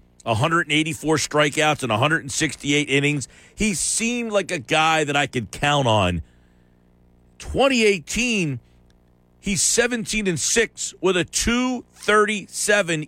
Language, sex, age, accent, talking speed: English, male, 50-69, American, 105 wpm